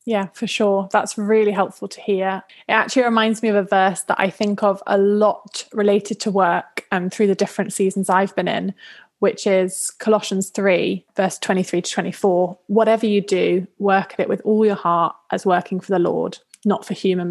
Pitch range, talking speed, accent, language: 190-215 Hz, 200 wpm, British, English